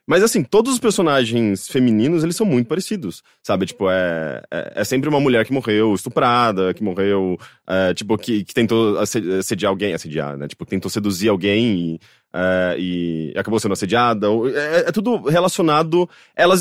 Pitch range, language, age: 100-160 Hz, Portuguese, 20-39